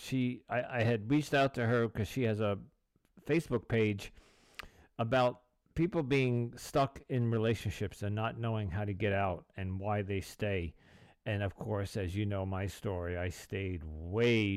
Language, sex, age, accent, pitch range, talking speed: English, male, 50-69, American, 105-130 Hz, 175 wpm